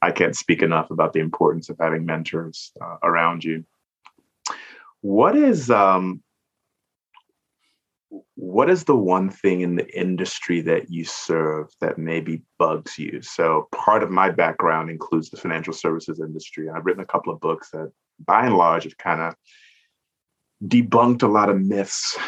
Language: English